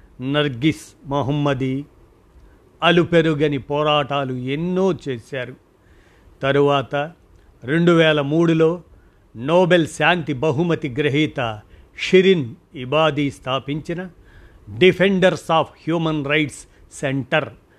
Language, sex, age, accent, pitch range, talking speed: Telugu, male, 50-69, native, 125-160 Hz, 75 wpm